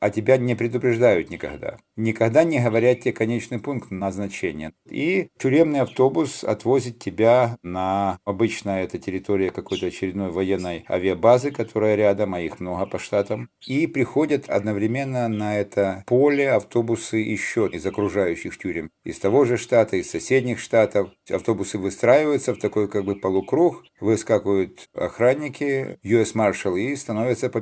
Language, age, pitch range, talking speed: Russian, 50-69, 100-125 Hz, 135 wpm